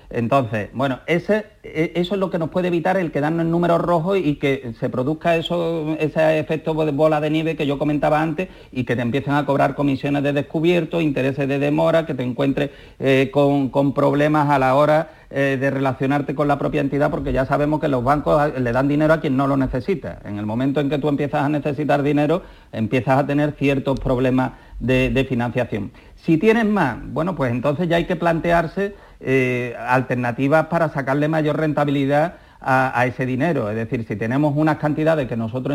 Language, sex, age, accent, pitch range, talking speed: Spanish, male, 40-59, Spanish, 130-155 Hz, 200 wpm